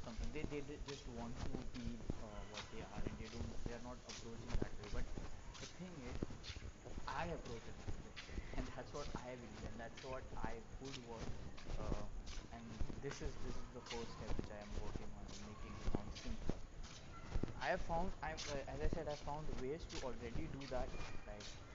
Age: 20-39